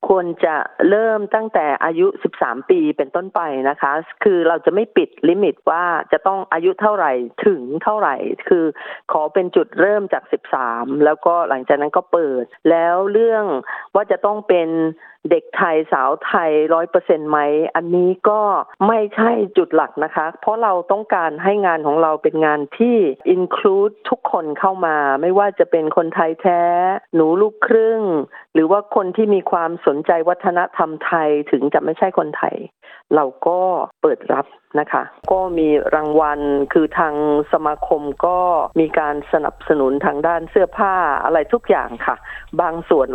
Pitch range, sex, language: 150-200 Hz, female, Thai